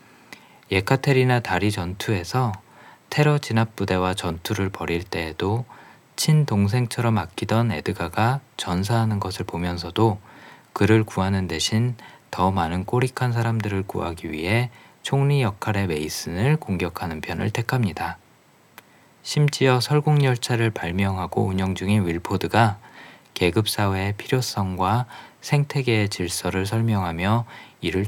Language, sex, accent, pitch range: Korean, male, native, 95-125 Hz